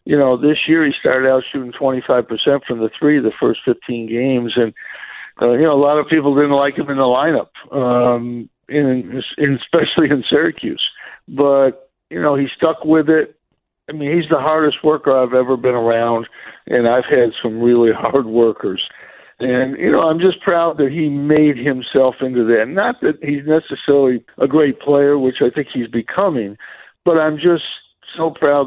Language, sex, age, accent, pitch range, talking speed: English, male, 60-79, American, 125-145 Hz, 185 wpm